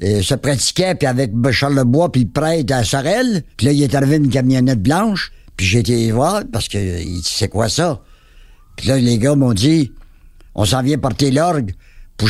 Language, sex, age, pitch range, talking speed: French, male, 60-79, 80-125 Hz, 215 wpm